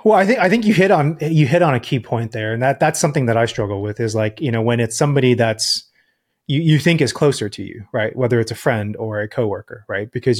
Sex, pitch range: male, 115-150 Hz